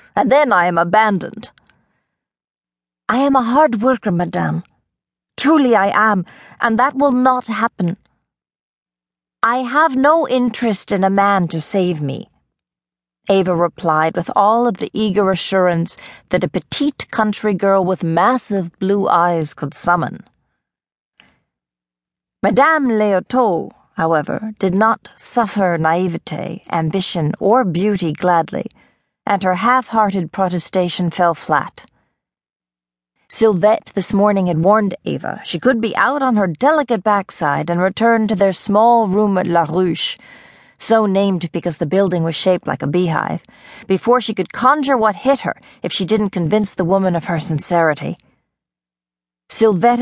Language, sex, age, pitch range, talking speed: English, female, 40-59, 170-220 Hz, 140 wpm